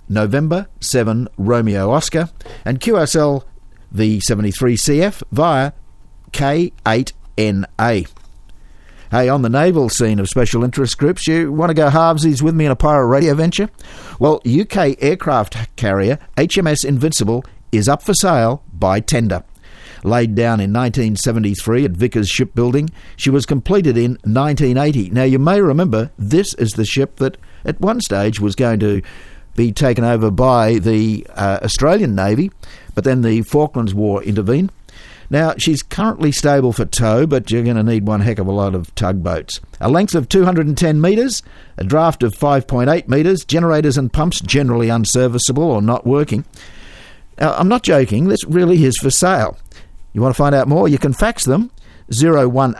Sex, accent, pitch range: male, Australian, 110-150 Hz